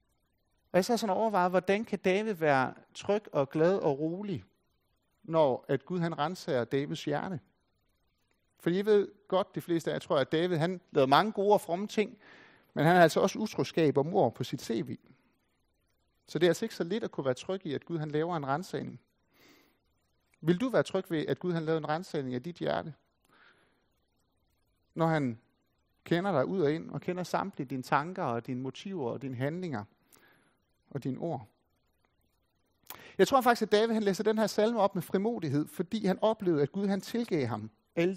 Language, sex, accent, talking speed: Danish, male, native, 190 wpm